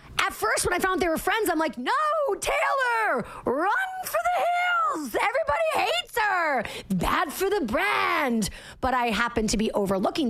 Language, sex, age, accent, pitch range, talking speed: English, female, 30-49, American, 210-295 Hz, 170 wpm